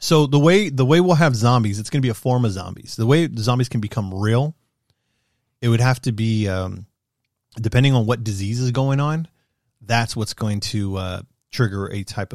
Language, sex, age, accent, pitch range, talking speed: English, male, 30-49, American, 105-130 Hz, 215 wpm